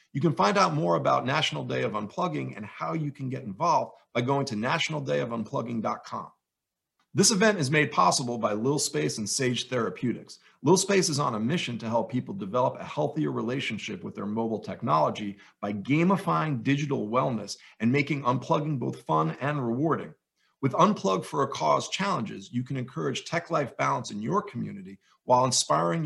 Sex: male